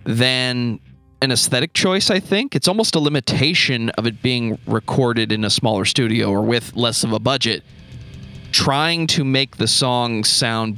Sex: male